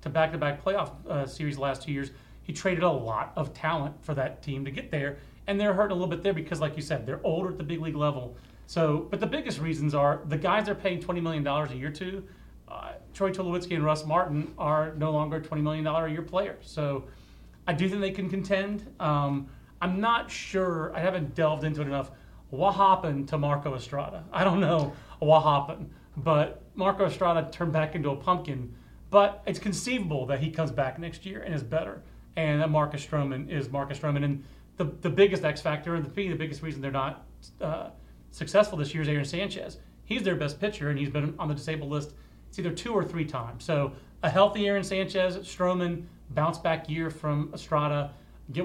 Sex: male